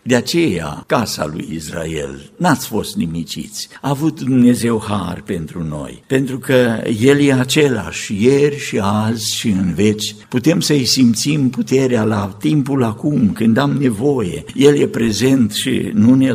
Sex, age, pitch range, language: male, 60-79, 105-135 Hz, Romanian